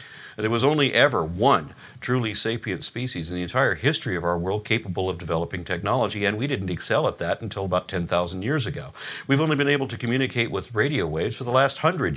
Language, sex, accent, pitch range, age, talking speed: English, male, American, 90-125 Hz, 50-69, 210 wpm